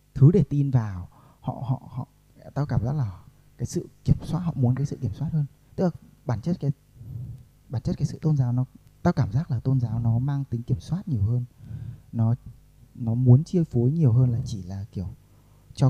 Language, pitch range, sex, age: Vietnamese, 120-145 Hz, male, 20-39